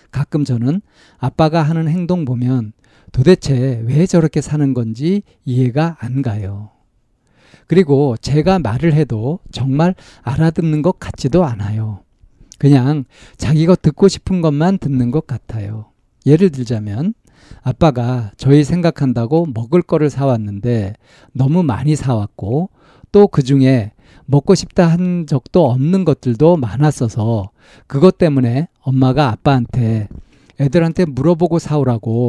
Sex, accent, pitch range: male, native, 120-160 Hz